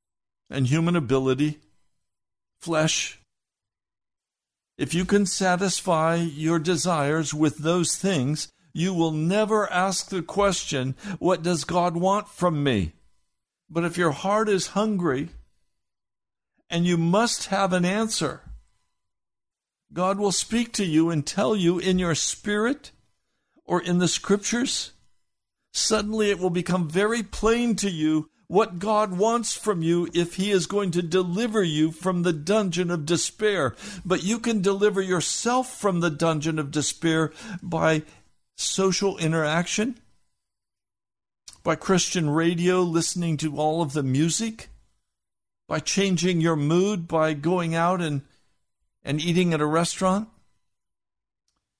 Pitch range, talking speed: 145-190 Hz, 130 wpm